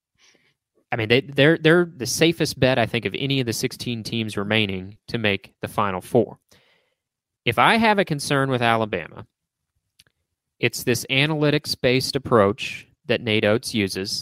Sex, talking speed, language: male, 150 wpm, English